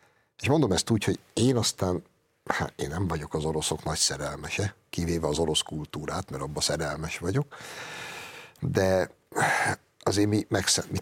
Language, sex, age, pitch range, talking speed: Hungarian, male, 60-79, 80-115 Hz, 150 wpm